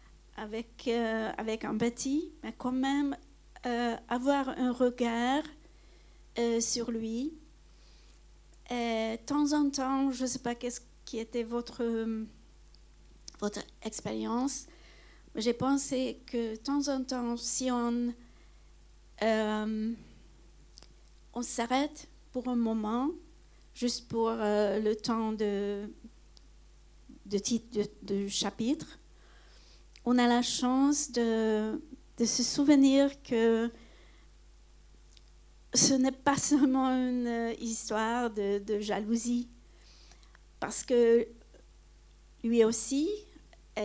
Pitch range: 225-260 Hz